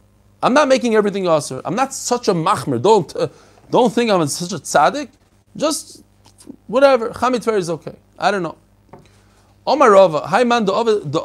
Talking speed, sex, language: 160 wpm, male, English